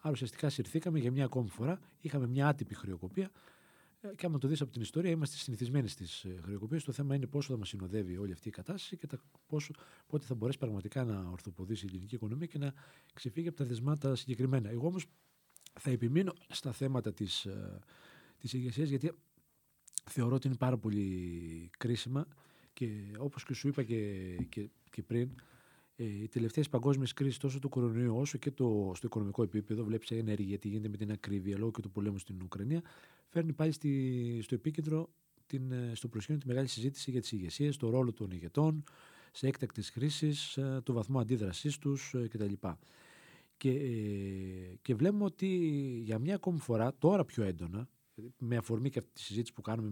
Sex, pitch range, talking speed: male, 110-145 Hz, 175 wpm